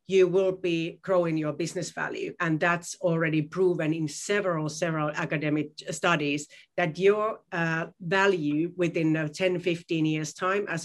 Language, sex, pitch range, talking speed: English, female, 165-195 Hz, 145 wpm